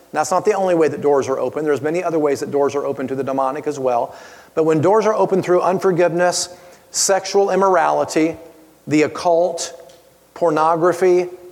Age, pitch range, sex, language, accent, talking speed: 40-59, 160-185 Hz, male, English, American, 180 wpm